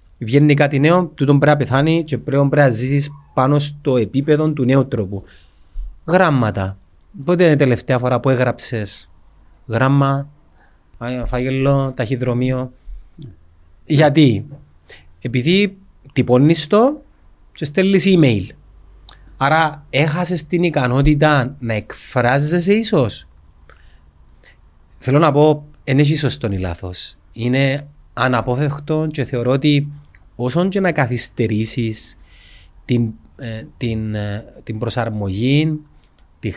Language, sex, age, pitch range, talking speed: Greek, male, 30-49, 105-145 Hz, 105 wpm